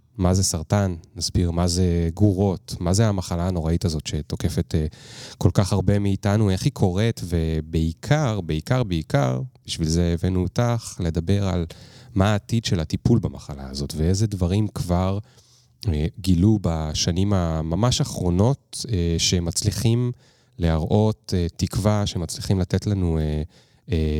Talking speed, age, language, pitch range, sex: 135 wpm, 30-49, Hebrew, 85-110 Hz, male